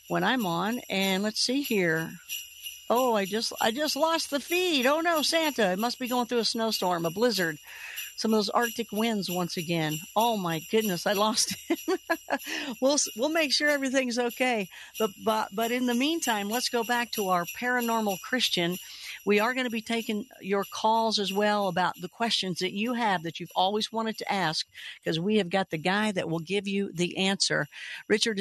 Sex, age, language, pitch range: female, 50-69, English, 190-245 Hz